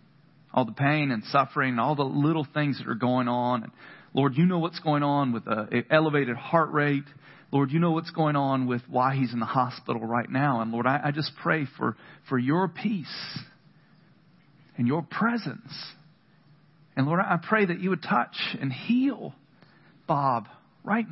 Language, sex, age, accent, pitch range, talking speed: English, male, 40-59, American, 135-165 Hz, 185 wpm